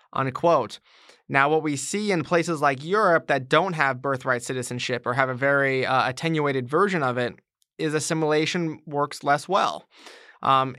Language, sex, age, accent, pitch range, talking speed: English, male, 20-39, American, 135-160 Hz, 155 wpm